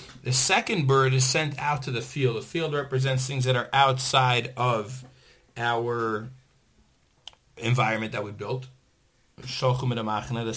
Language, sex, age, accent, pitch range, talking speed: English, male, 40-59, American, 115-130 Hz, 130 wpm